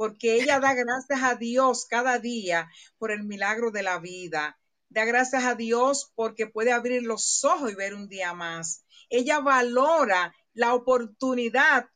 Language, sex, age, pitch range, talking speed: Spanish, female, 50-69, 215-275 Hz, 160 wpm